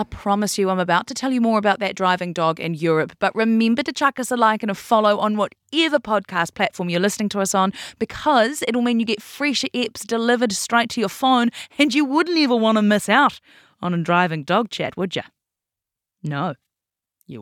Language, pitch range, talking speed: English, 170-245 Hz, 215 wpm